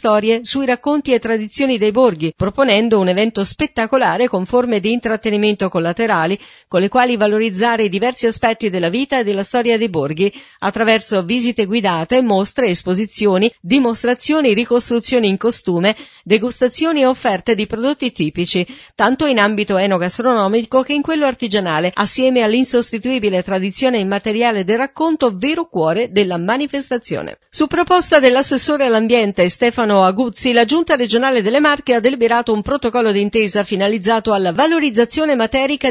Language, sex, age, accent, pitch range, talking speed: Italian, female, 40-59, native, 205-255 Hz, 140 wpm